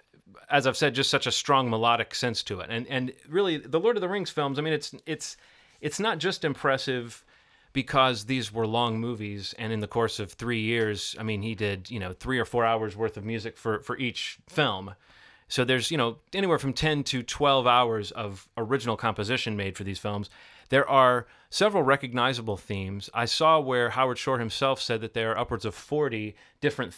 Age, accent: 30-49, American